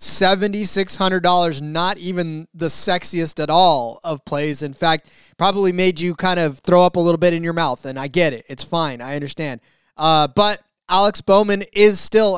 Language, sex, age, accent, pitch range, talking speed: English, male, 20-39, American, 160-185 Hz, 185 wpm